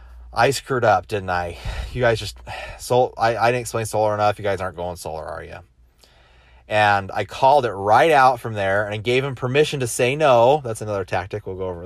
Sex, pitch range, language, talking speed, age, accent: male, 100-155 Hz, English, 225 wpm, 30-49, American